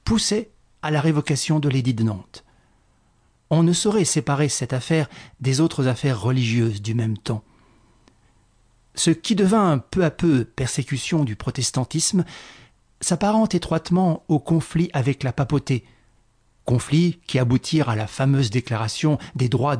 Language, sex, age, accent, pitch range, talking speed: French, male, 40-59, French, 120-160 Hz, 140 wpm